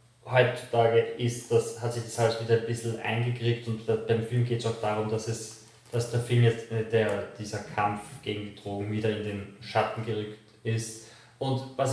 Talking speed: 190 wpm